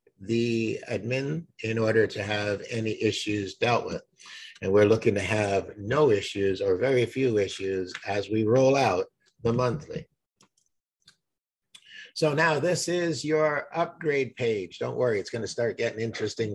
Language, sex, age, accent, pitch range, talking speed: English, male, 50-69, American, 110-145 Hz, 150 wpm